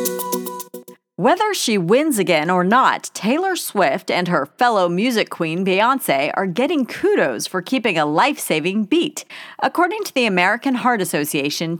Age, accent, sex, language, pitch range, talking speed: 40-59, American, female, English, 170-255 Hz, 140 wpm